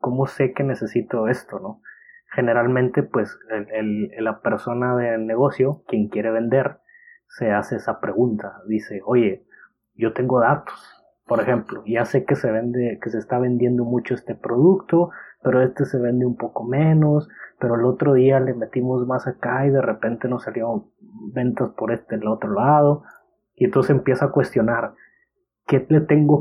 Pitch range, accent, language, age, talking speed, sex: 110-135 Hz, Mexican, Spanish, 30-49, 170 wpm, male